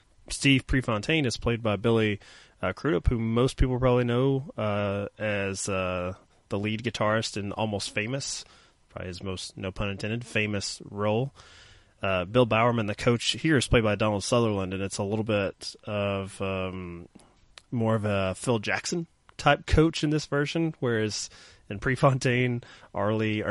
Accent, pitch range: American, 100-115 Hz